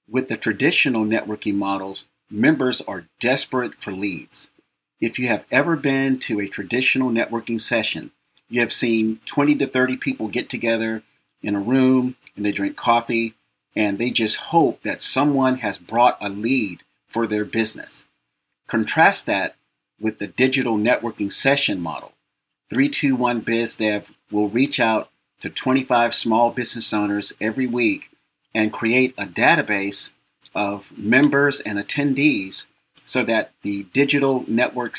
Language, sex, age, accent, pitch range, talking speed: English, male, 40-59, American, 105-130 Hz, 140 wpm